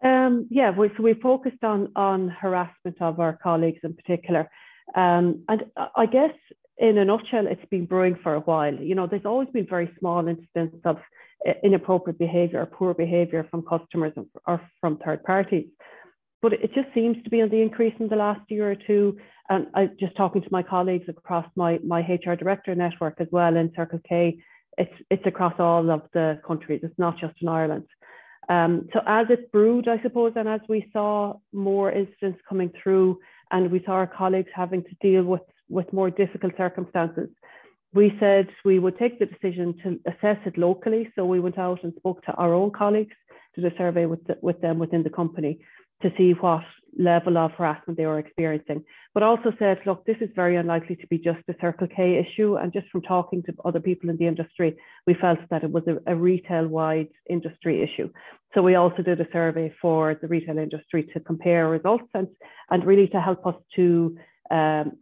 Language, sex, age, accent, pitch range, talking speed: English, female, 40-59, Irish, 165-195 Hz, 200 wpm